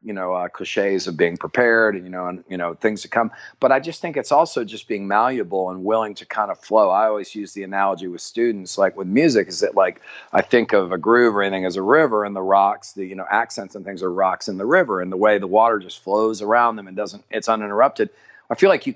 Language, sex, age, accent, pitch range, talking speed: English, male, 40-59, American, 95-115 Hz, 265 wpm